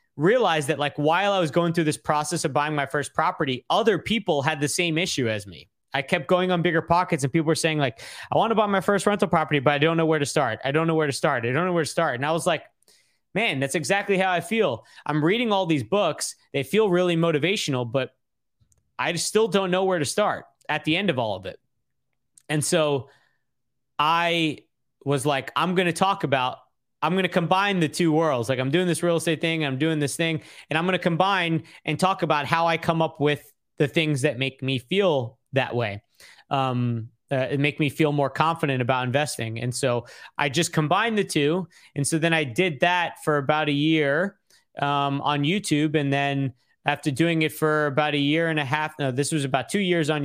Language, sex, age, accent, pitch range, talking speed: English, male, 30-49, American, 140-170 Hz, 230 wpm